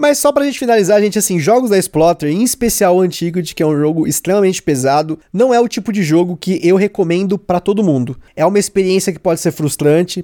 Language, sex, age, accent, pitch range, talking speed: Portuguese, male, 20-39, Brazilian, 170-225 Hz, 230 wpm